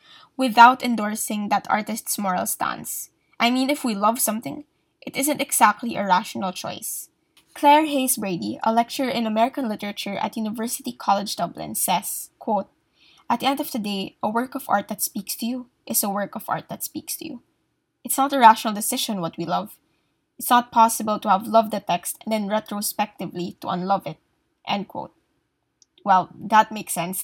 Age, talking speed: 10-29, 185 wpm